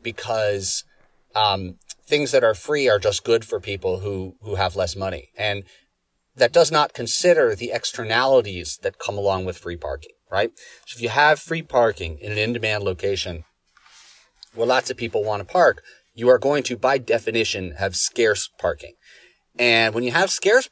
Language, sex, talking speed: English, male, 175 wpm